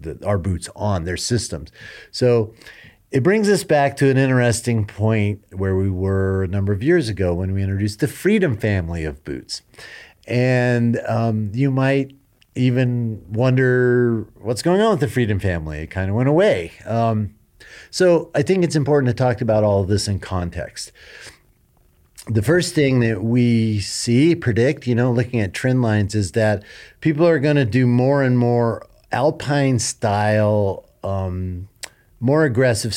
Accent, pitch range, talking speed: American, 95-130 Hz, 165 wpm